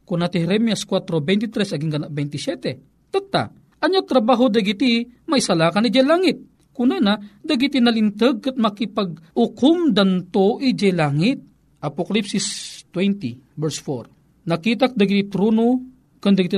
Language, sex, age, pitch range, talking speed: Filipino, male, 40-59, 175-240 Hz, 110 wpm